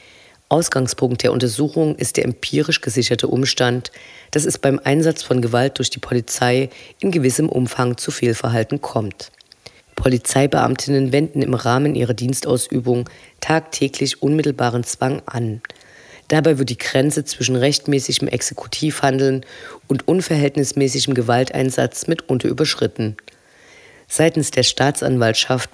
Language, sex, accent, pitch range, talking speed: German, female, German, 125-140 Hz, 110 wpm